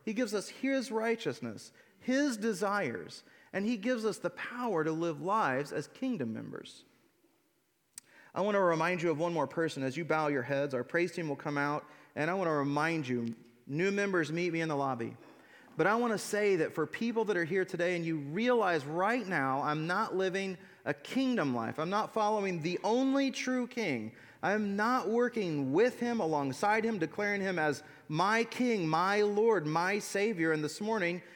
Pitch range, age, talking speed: 160-225 Hz, 30-49, 195 wpm